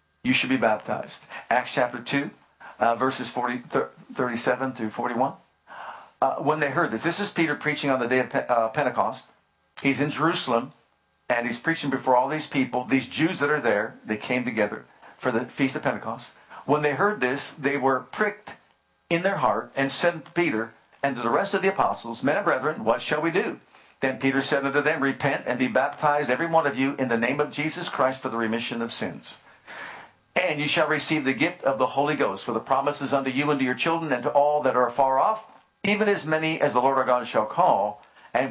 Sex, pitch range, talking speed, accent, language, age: male, 125-155 Hz, 220 wpm, American, English, 50-69